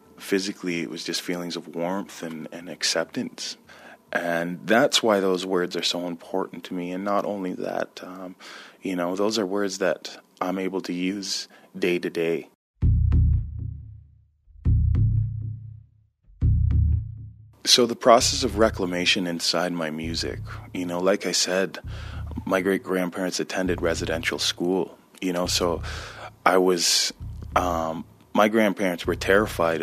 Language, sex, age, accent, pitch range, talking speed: English, male, 20-39, American, 85-100 Hz, 135 wpm